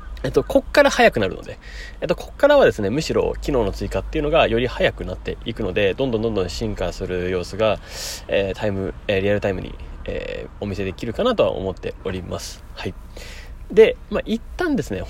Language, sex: Japanese, male